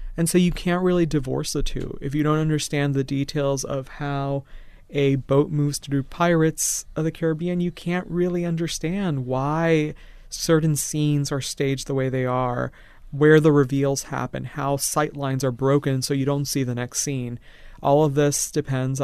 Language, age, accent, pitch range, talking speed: English, 30-49, American, 130-145 Hz, 180 wpm